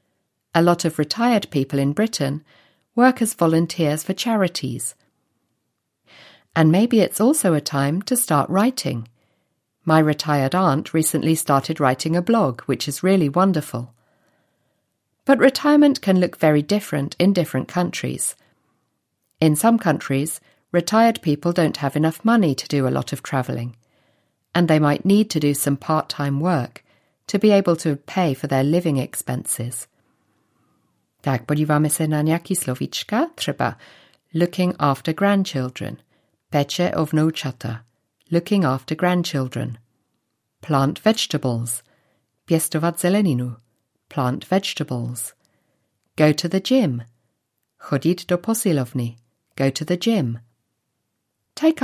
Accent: British